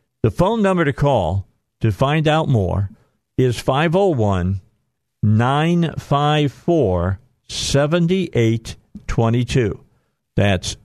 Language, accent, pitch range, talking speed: English, American, 105-130 Hz, 115 wpm